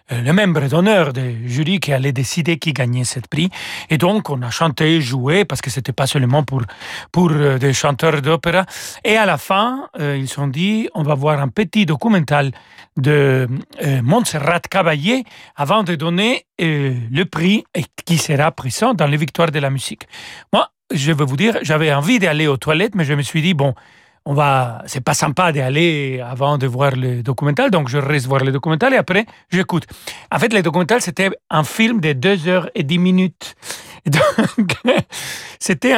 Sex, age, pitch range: male, 40-59, 140-185 Hz